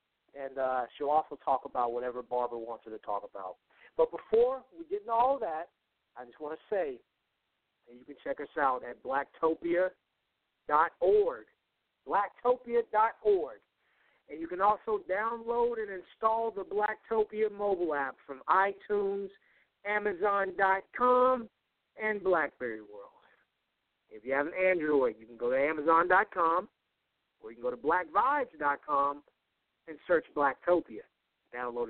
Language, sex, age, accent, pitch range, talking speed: English, male, 50-69, American, 145-230 Hz, 135 wpm